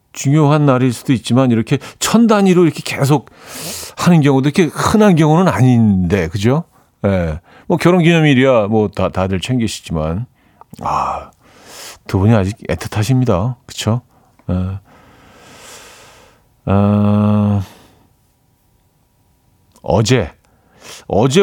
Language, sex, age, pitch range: Korean, male, 50-69, 100-145 Hz